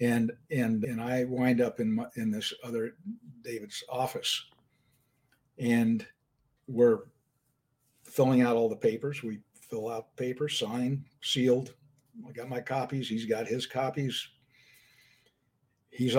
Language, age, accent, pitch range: English, 60-79, American, 120-145 Hz